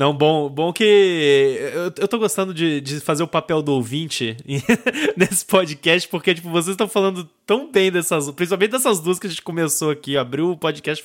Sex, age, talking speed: male, 20-39, 195 wpm